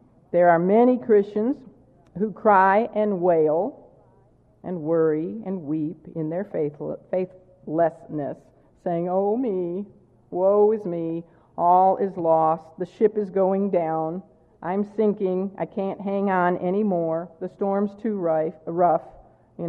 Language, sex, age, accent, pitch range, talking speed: English, female, 50-69, American, 155-190 Hz, 125 wpm